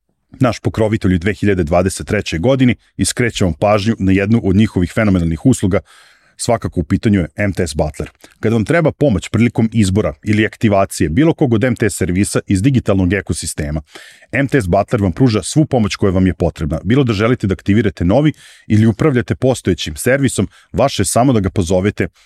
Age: 40-59